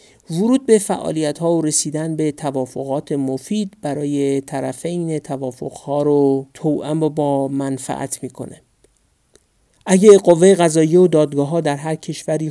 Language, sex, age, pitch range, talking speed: Persian, male, 50-69, 145-180 Hz, 125 wpm